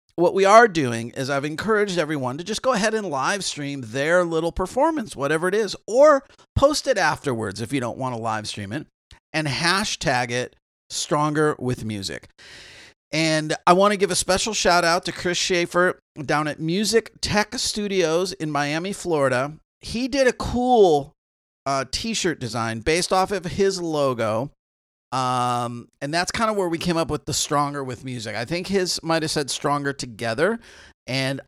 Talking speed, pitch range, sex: 180 wpm, 125-180 Hz, male